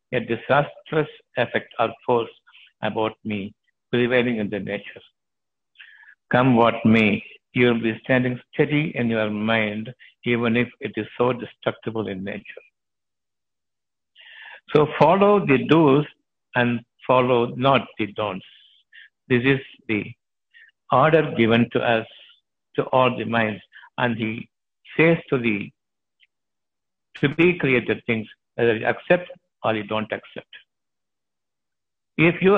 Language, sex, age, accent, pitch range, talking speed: Tamil, male, 60-79, native, 115-150 Hz, 120 wpm